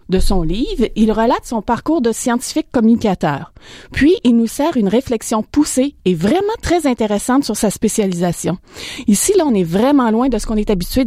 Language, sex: French, female